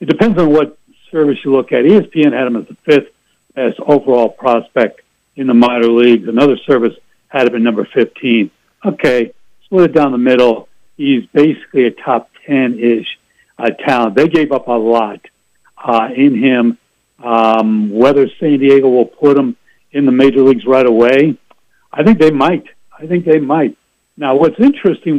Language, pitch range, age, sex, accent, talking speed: English, 120-165 Hz, 70-89, male, American, 175 wpm